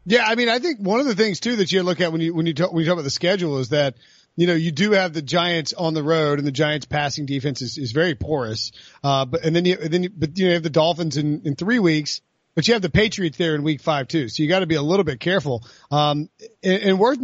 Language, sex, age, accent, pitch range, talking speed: English, male, 30-49, American, 145-200 Hz, 295 wpm